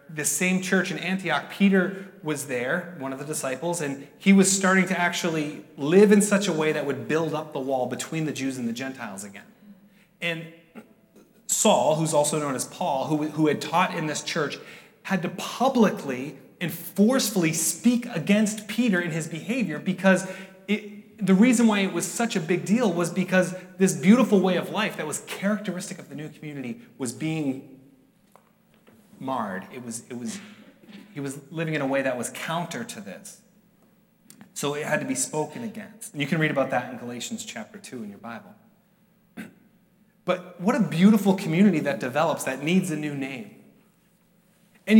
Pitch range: 155-210 Hz